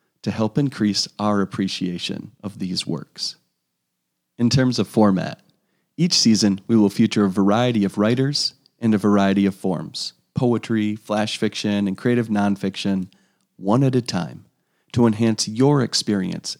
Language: English